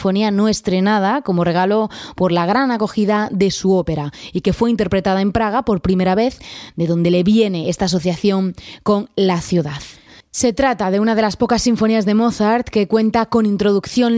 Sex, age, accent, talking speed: female, 20-39, Spanish, 180 wpm